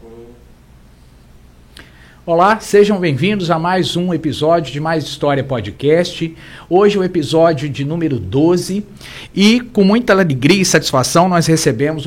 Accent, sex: Brazilian, male